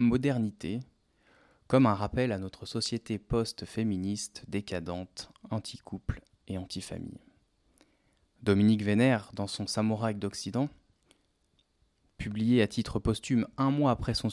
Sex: male